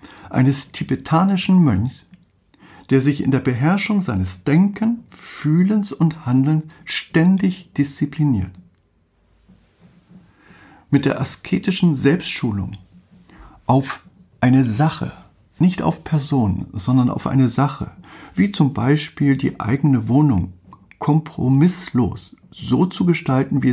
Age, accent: 50-69, German